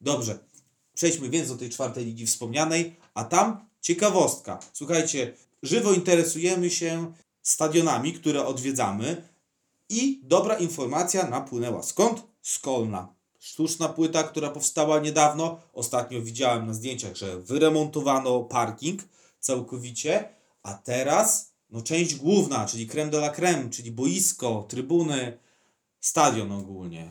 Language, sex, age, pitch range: Polish, male, 30-49, 125-165 Hz